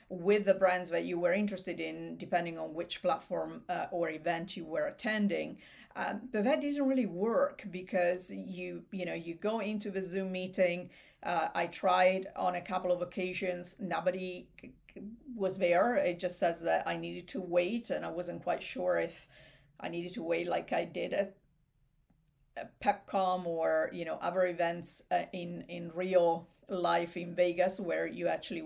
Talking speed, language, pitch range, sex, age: 175 wpm, English, 170-195 Hz, female, 40-59